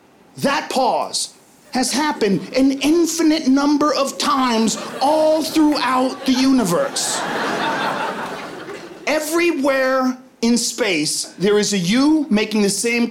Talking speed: 105 wpm